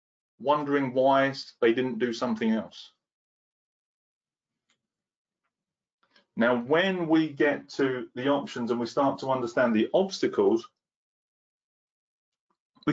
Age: 30-49